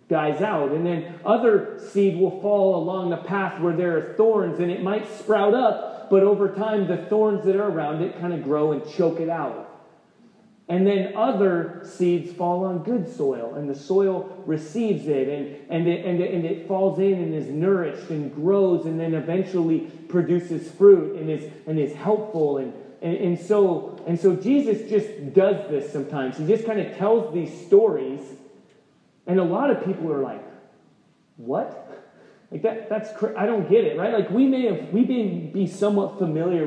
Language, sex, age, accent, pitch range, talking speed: English, male, 30-49, American, 165-210 Hz, 190 wpm